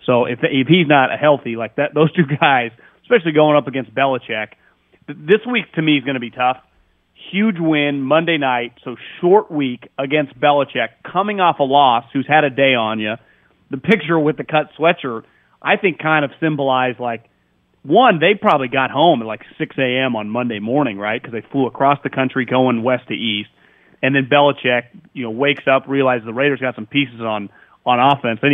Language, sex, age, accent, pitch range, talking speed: English, male, 30-49, American, 125-155 Hz, 200 wpm